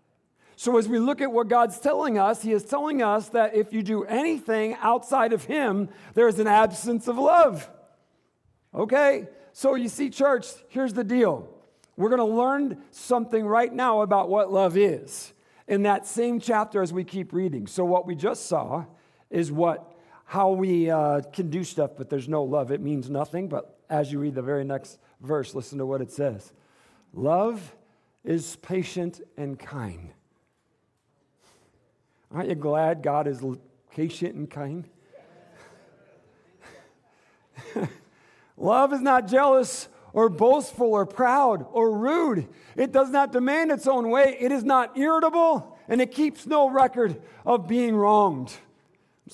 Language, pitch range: English, 170-245 Hz